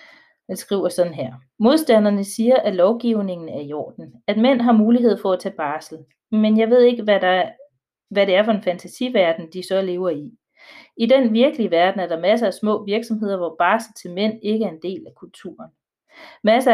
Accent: native